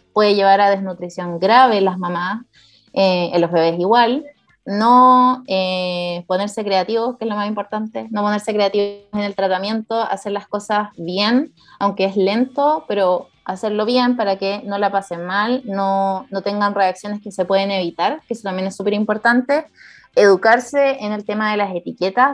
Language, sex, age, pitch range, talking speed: Romanian, female, 20-39, 190-225 Hz, 175 wpm